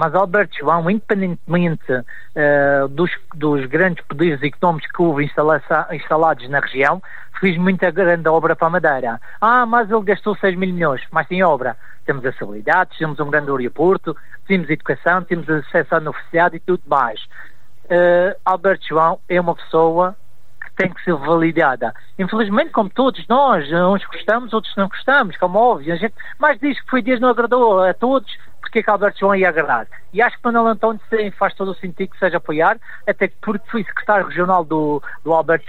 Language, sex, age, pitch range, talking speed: Portuguese, male, 50-69, 165-205 Hz, 185 wpm